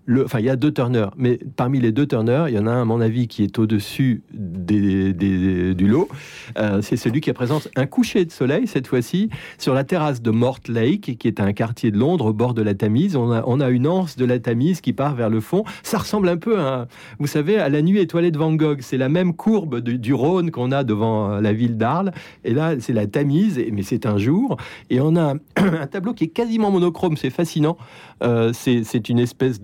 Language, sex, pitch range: French, male, 115-160 Hz